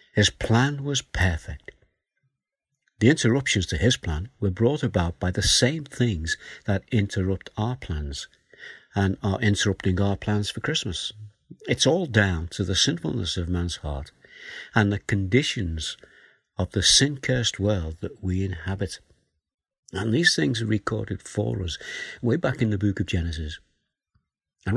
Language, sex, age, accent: English, male, 60-79, British